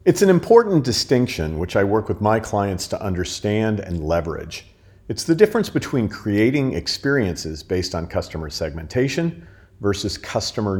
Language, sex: English, male